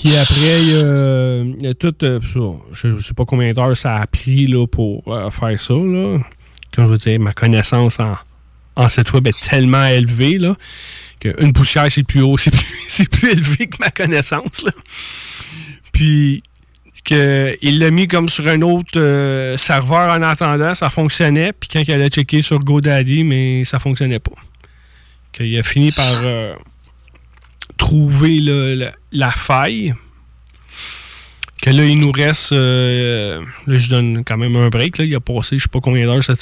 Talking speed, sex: 175 wpm, male